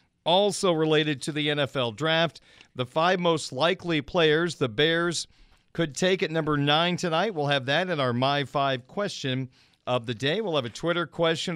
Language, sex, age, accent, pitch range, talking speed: English, male, 40-59, American, 130-170 Hz, 180 wpm